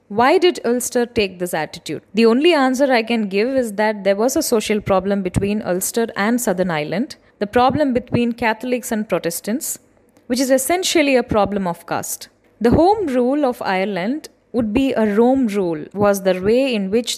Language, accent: Tamil, native